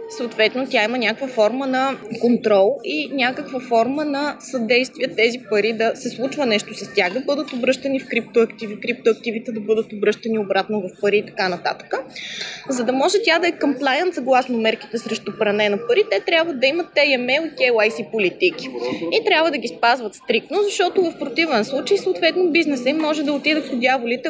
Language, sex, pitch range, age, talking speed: Bulgarian, female, 225-280 Hz, 20-39, 185 wpm